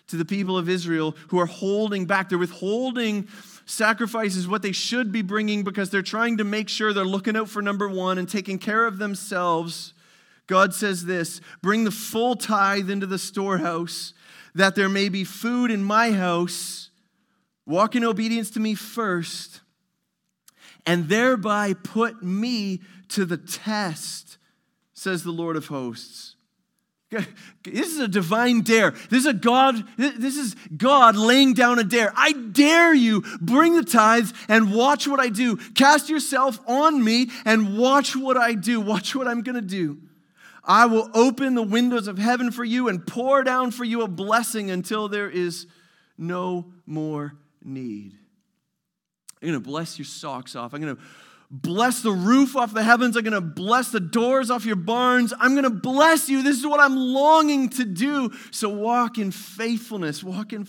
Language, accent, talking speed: English, American, 170 wpm